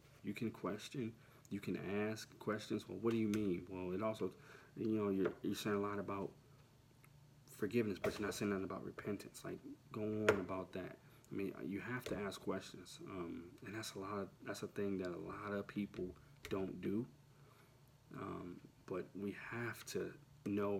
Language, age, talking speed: English, 30-49, 190 wpm